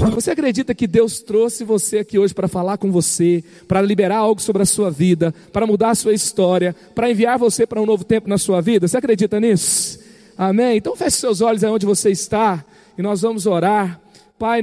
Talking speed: 205 wpm